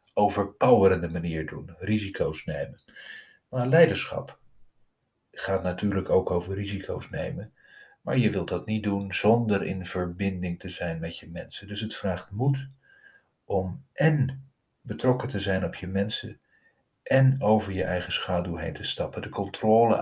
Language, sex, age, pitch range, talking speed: Dutch, male, 40-59, 90-130 Hz, 145 wpm